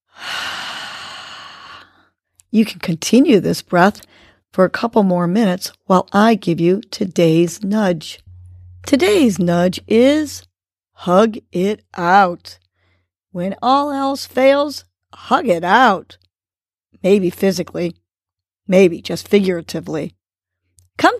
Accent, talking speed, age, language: American, 100 wpm, 50-69, English